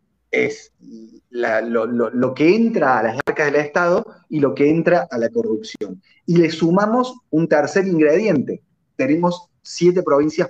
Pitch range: 130-180 Hz